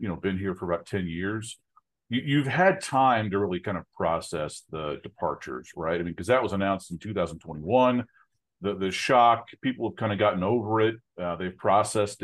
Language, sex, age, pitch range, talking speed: English, male, 40-59, 100-125 Hz, 200 wpm